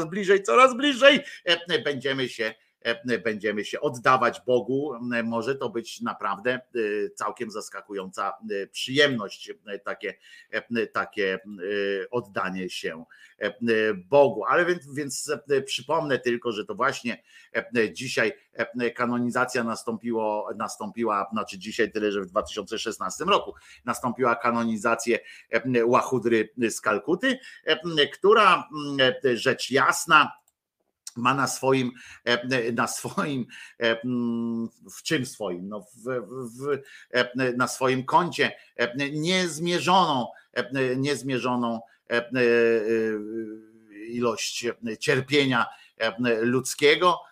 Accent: native